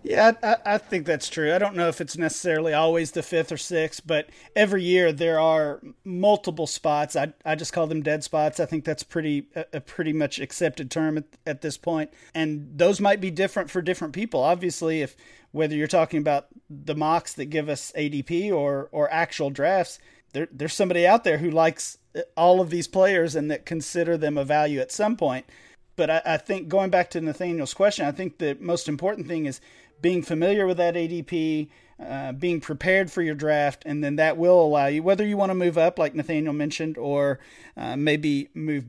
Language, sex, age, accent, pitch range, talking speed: English, male, 40-59, American, 150-180 Hz, 205 wpm